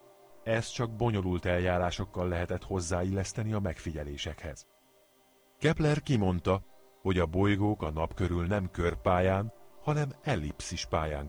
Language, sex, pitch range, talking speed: Hungarian, male, 90-115 Hz, 110 wpm